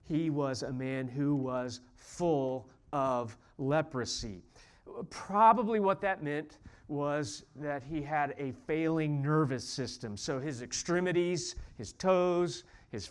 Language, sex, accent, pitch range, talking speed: English, male, American, 135-180 Hz, 125 wpm